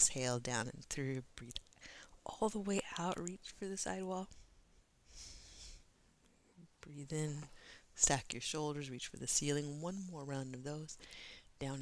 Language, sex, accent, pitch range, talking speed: English, female, American, 130-170 Hz, 145 wpm